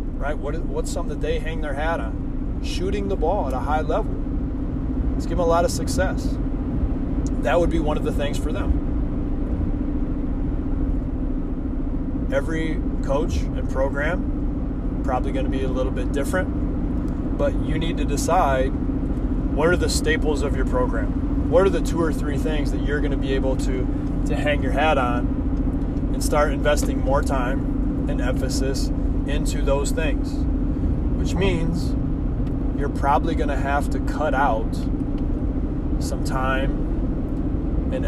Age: 20-39